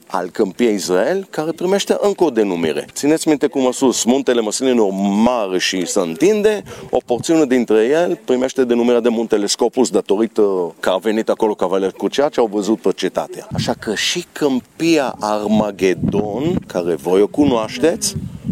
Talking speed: 160 wpm